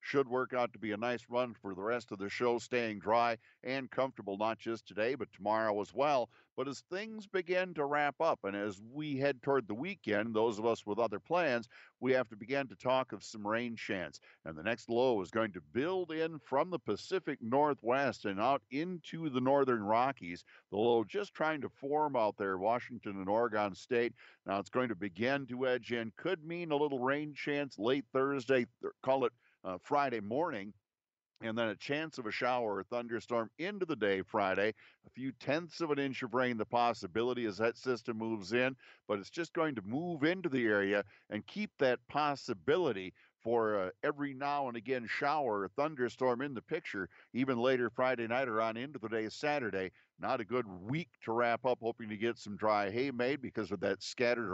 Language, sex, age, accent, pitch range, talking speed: English, male, 50-69, American, 110-140 Hz, 205 wpm